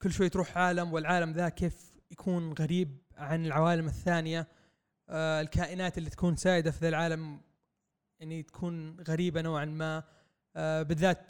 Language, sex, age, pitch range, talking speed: Arabic, male, 20-39, 155-180 Hz, 145 wpm